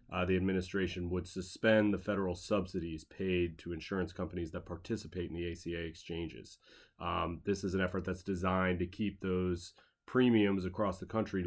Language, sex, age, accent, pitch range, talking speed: English, male, 30-49, American, 85-95 Hz, 165 wpm